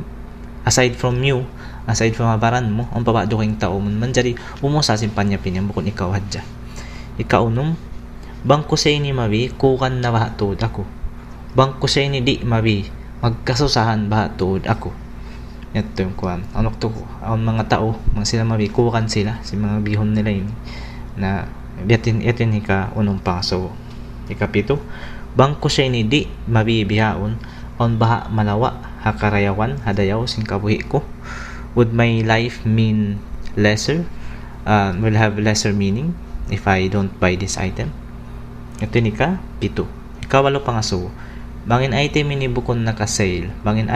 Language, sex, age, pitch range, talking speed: Filipino, male, 20-39, 100-120 Hz, 135 wpm